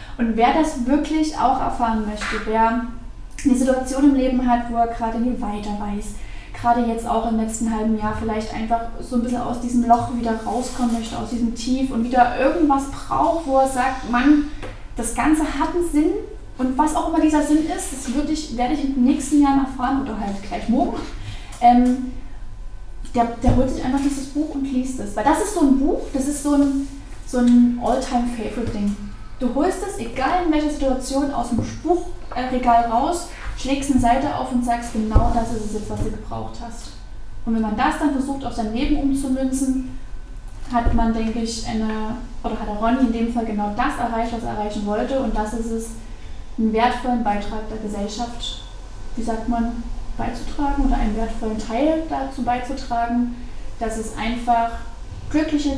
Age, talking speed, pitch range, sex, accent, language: 10-29, 190 wpm, 225-275 Hz, female, German, German